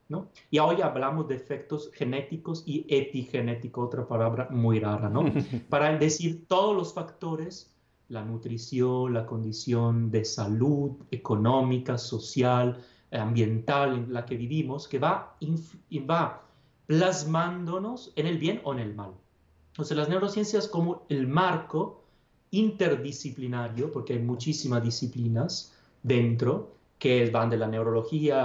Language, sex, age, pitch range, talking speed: Spanish, male, 30-49, 120-155 Hz, 135 wpm